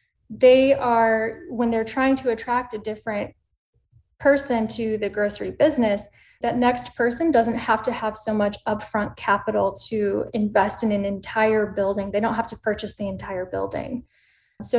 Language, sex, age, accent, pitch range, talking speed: English, female, 10-29, American, 210-245 Hz, 160 wpm